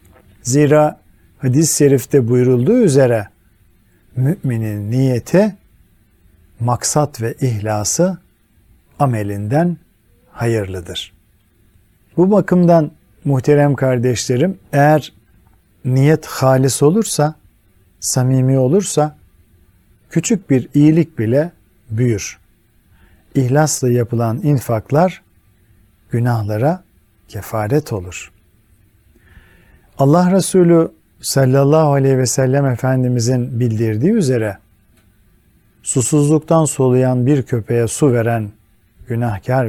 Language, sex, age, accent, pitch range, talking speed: Turkish, male, 50-69, native, 100-140 Hz, 75 wpm